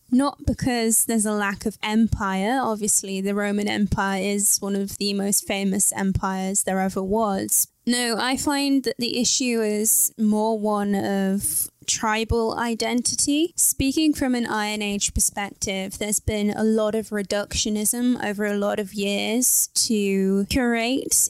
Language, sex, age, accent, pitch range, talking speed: English, female, 10-29, British, 200-225 Hz, 145 wpm